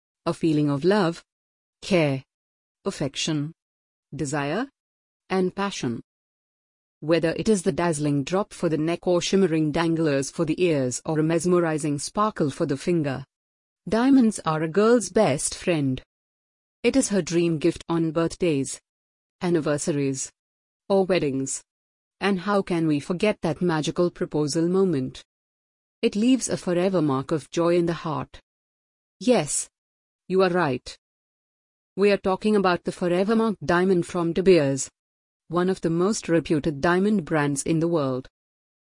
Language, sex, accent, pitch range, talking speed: English, female, Indian, 150-190 Hz, 140 wpm